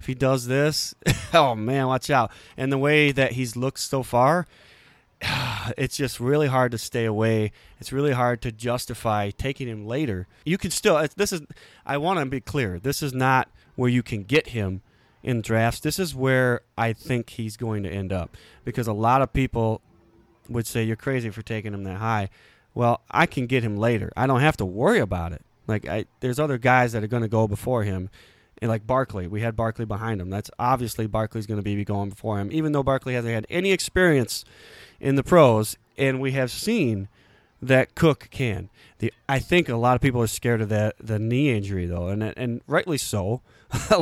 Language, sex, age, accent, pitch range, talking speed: English, male, 20-39, American, 110-135 Hz, 210 wpm